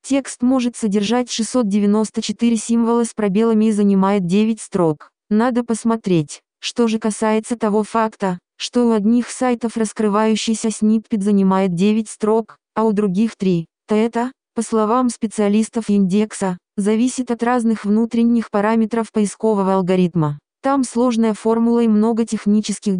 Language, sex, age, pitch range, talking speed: Russian, female, 20-39, 205-230 Hz, 130 wpm